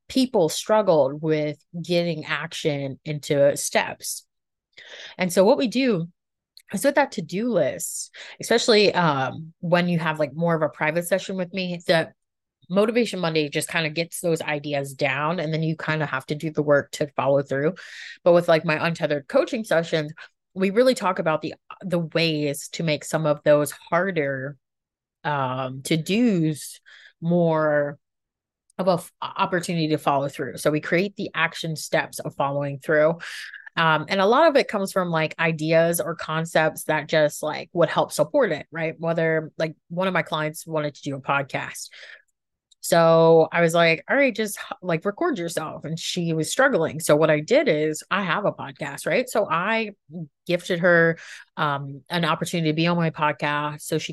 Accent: American